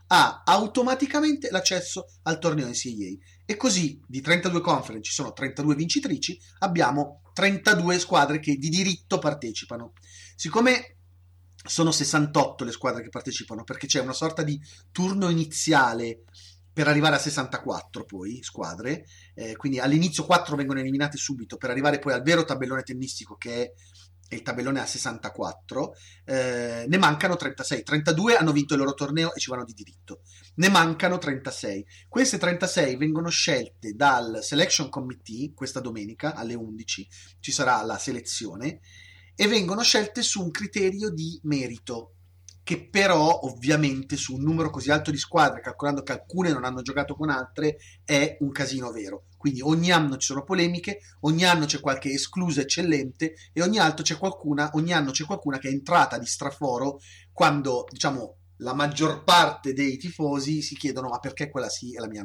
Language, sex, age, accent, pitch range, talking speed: Italian, male, 30-49, native, 115-160 Hz, 160 wpm